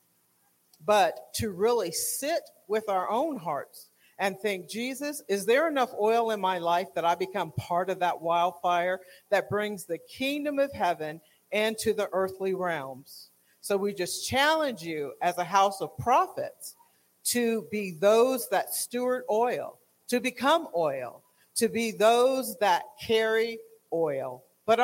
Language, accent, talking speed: English, American, 145 wpm